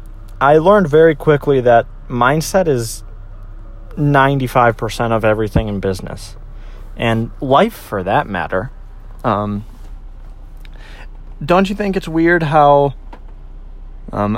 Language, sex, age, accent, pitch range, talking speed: English, male, 30-49, American, 100-140 Hz, 105 wpm